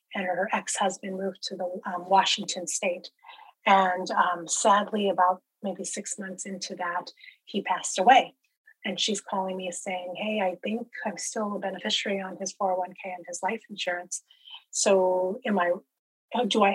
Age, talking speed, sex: 30-49, 160 wpm, female